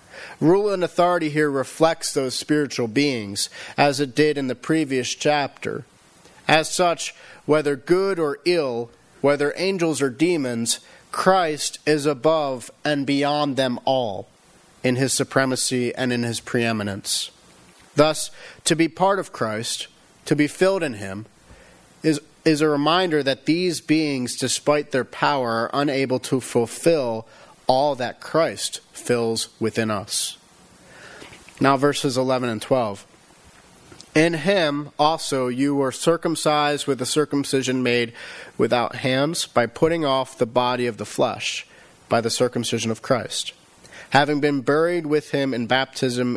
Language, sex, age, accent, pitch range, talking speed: English, male, 40-59, American, 120-150 Hz, 140 wpm